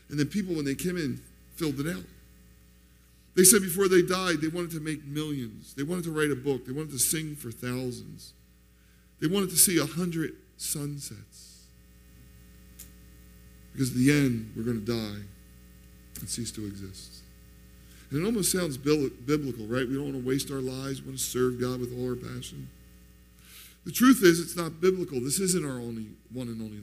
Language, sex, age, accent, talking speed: Italian, male, 50-69, American, 190 wpm